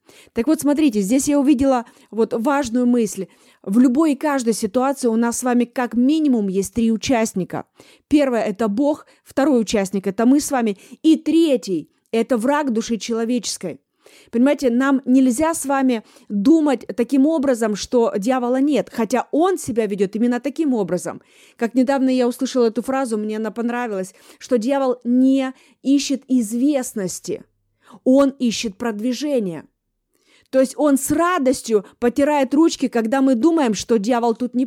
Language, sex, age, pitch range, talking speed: Russian, female, 20-39, 225-280 Hz, 155 wpm